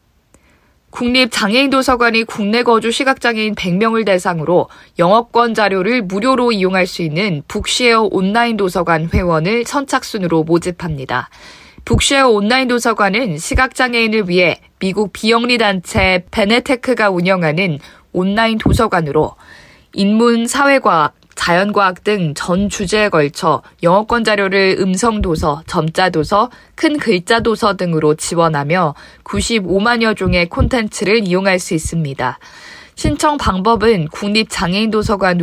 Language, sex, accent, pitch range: Korean, female, native, 175-230 Hz